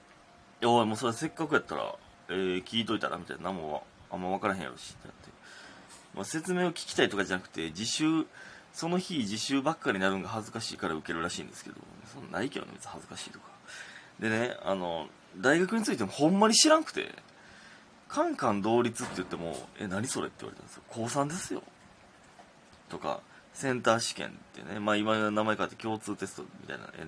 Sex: male